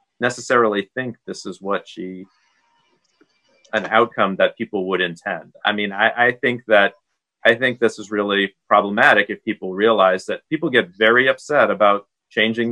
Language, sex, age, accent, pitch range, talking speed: English, male, 30-49, American, 100-125 Hz, 160 wpm